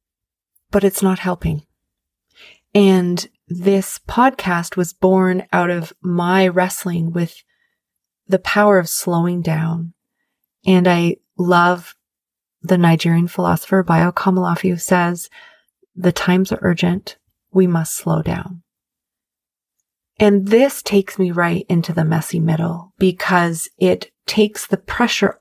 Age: 30-49